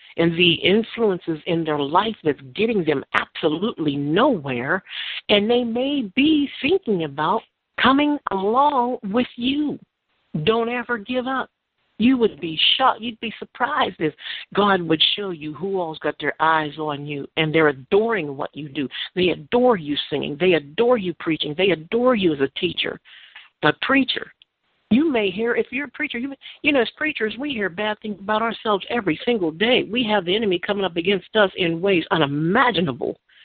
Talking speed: 180 wpm